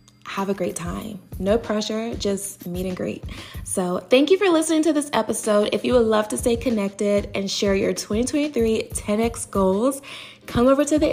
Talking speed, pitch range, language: 190 wpm, 180-230 Hz, English